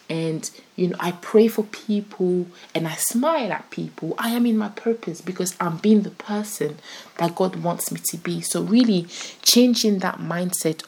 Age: 20-39